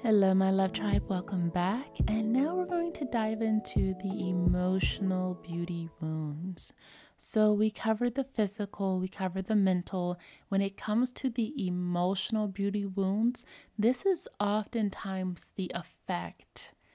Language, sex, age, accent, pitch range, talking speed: English, female, 20-39, American, 165-200 Hz, 140 wpm